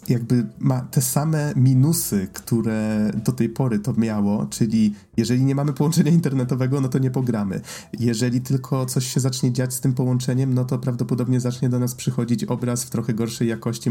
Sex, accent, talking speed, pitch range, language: male, native, 180 wpm, 110-130 Hz, Polish